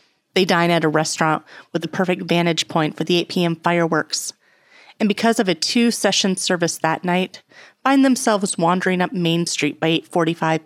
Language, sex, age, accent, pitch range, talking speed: English, female, 30-49, American, 160-185 Hz, 175 wpm